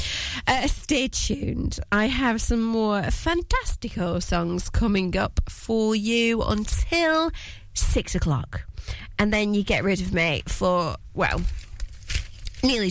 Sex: female